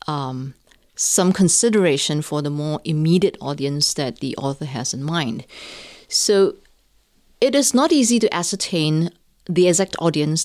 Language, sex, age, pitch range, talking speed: English, female, 30-49, 155-215 Hz, 140 wpm